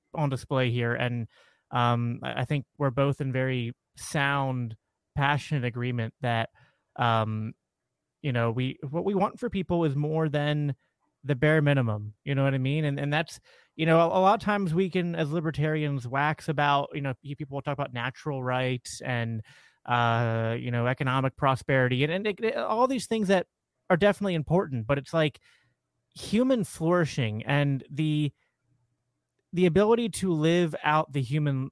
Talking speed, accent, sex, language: 170 wpm, American, male, English